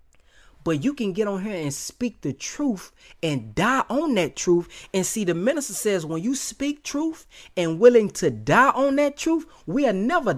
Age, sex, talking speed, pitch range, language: 30-49, male, 190 wpm, 190-300 Hz, English